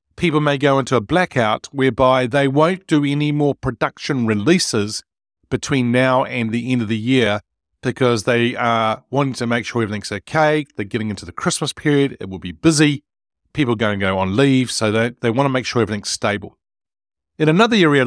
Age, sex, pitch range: 40-59, male, 110-145 Hz